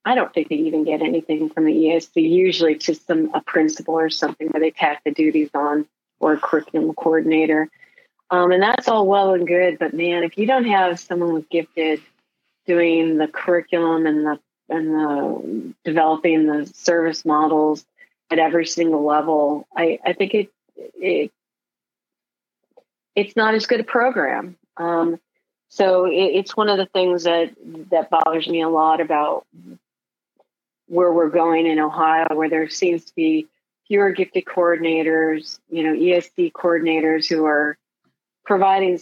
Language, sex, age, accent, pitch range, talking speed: English, female, 40-59, American, 160-185 Hz, 160 wpm